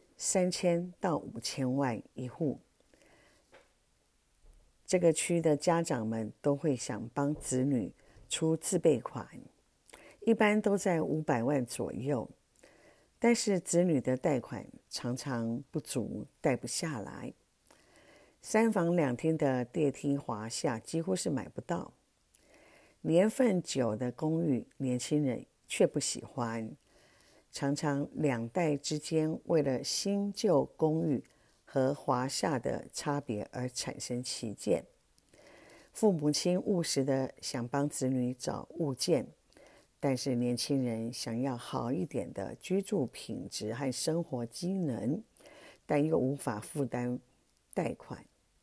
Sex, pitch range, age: female, 125-170 Hz, 50-69